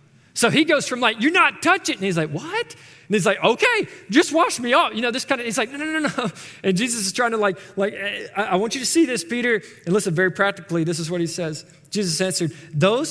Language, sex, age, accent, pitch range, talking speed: English, male, 20-39, American, 130-180 Hz, 270 wpm